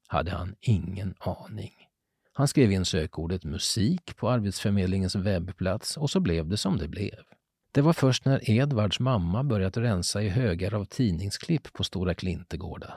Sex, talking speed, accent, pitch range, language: male, 155 wpm, native, 90-120 Hz, Swedish